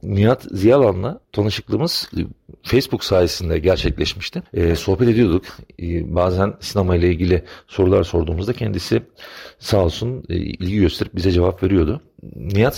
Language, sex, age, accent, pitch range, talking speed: Turkish, male, 40-59, native, 90-110 Hz, 105 wpm